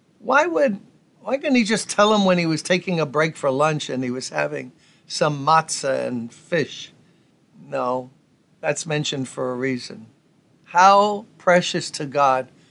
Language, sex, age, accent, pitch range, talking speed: English, male, 60-79, American, 140-180 Hz, 160 wpm